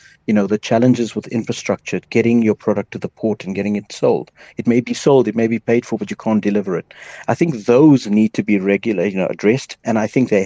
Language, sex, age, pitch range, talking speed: English, male, 60-79, 100-125 Hz, 250 wpm